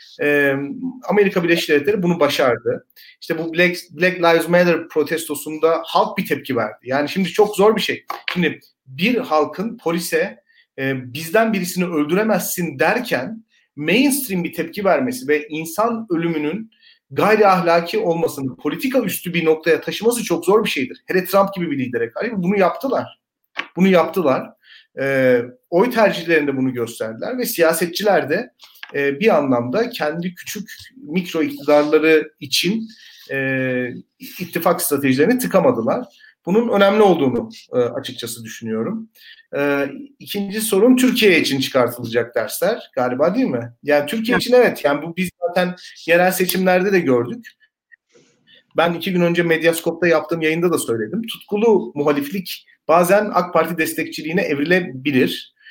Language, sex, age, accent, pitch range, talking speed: Turkish, male, 40-59, native, 150-210 Hz, 130 wpm